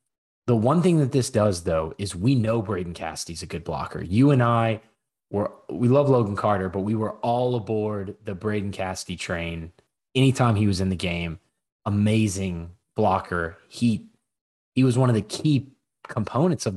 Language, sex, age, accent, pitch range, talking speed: English, male, 20-39, American, 95-120 Hz, 175 wpm